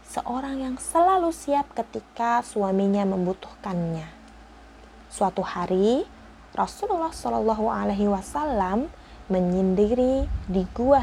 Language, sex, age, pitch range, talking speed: Indonesian, female, 20-39, 190-260 Hz, 85 wpm